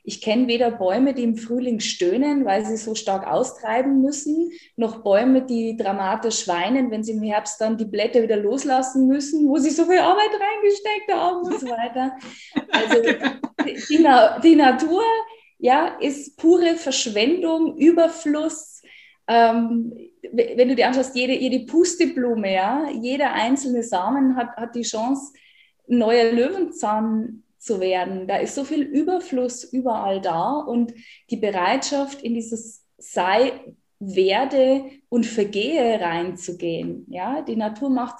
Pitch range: 225-290 Hz